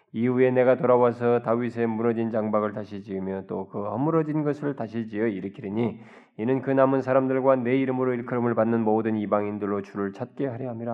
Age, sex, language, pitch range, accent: 20-39, male, Korean, 110-150 Hz, native